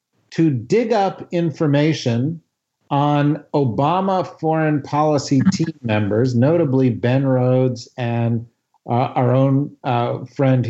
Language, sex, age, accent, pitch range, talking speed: English, male, 50-69, American, 125-165 Hz, 105 wpm